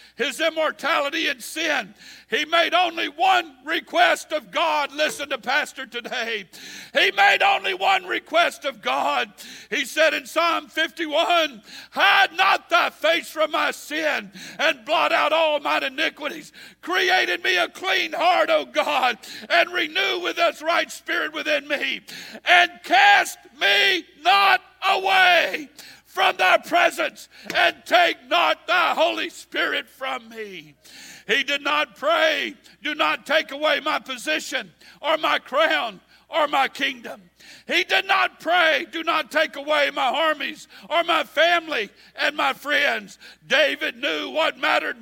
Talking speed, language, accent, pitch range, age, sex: 145 wpm, English, American, 295-345 Hz, 60-79, male